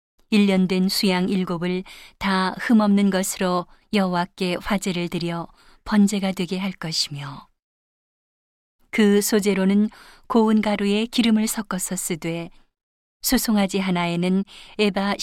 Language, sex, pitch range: Korean, female, 180-210 Hz